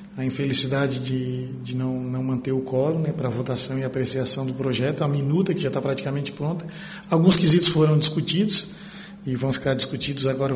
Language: Portuguese